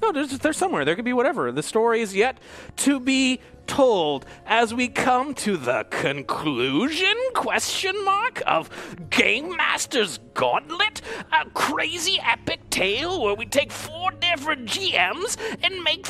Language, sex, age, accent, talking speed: English, male, 30-49, American, 145 wpm